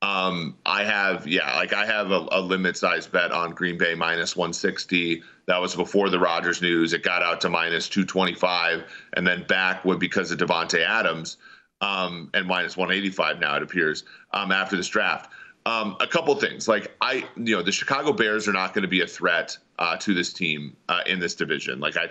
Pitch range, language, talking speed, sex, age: 90-105 Hz, English, 215 wpm, male, 40-59